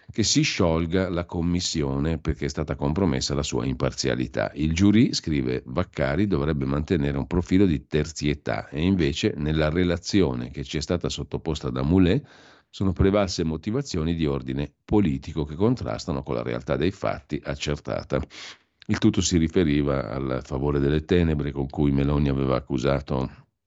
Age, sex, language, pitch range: 50-69, male, Italian, 70-90 Hz